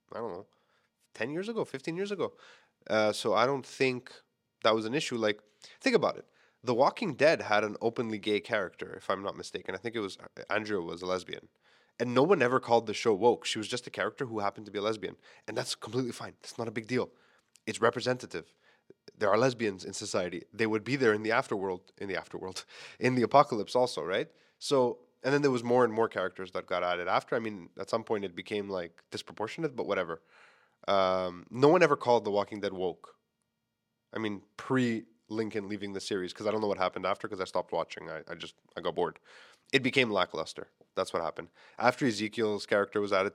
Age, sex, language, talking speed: 20-39, male, English, 220 wpm